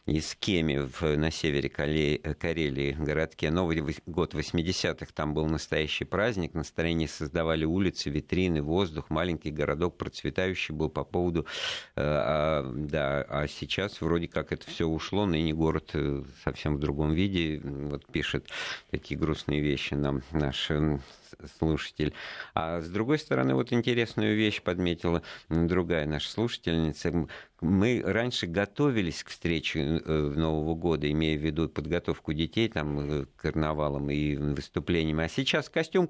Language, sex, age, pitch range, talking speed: Russian, male, 50-69, 75-105 Hz, 130 wpm